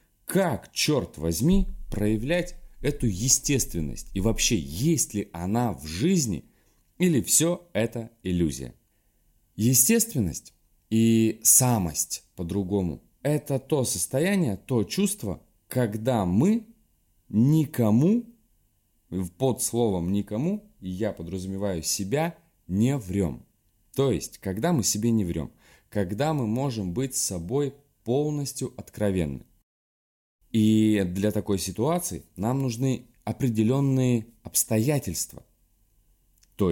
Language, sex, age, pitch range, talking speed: Russian, male, 20-39, 95-140 Hz, 100 wpm